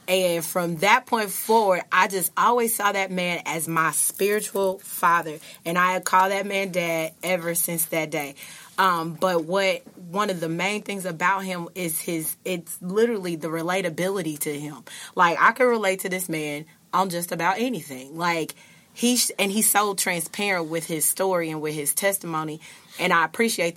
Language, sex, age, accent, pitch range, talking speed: English, female, 30-49, American, 175-210 Hz, 180 wpm